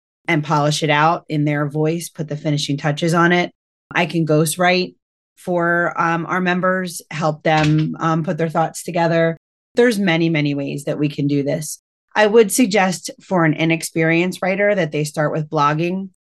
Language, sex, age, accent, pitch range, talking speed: English, female, 30-49, American, 155-180 Hz, 175 wpm